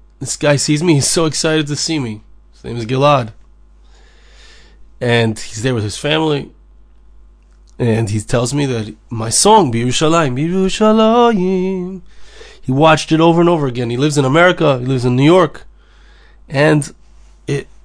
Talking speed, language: 160 wpm, English